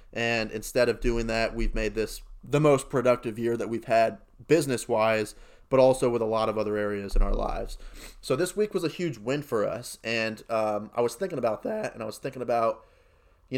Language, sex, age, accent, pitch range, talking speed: English, male, 30-49, American, 110-135 Hz, 220 wpm